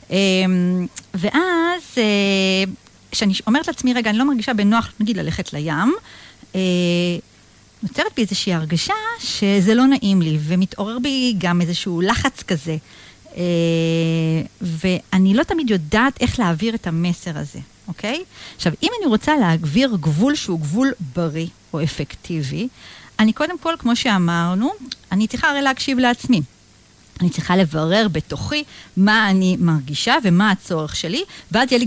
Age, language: 50-69, Hebrew